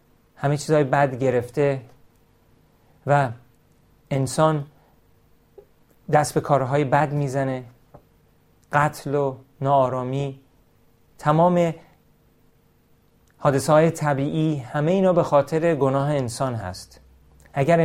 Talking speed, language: 85 wpm, Persian